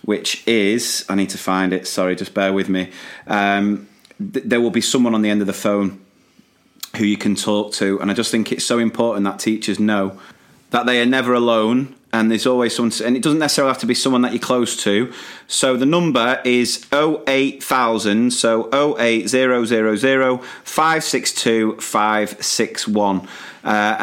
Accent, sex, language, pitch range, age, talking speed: British, male, English, 105-130 Hz, 30-49, 170 wpm